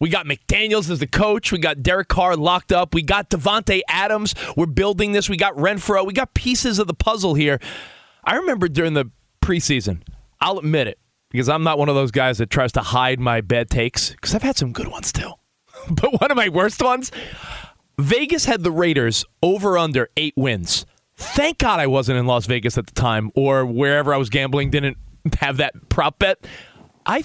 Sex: male